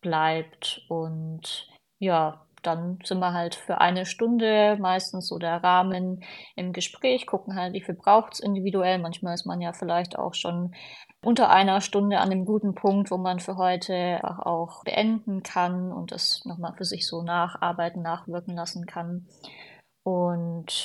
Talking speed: 160 wpm